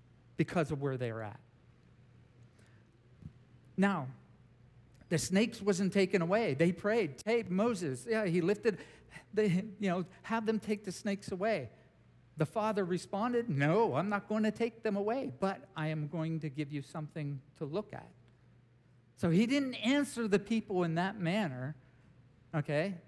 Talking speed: 155 wpm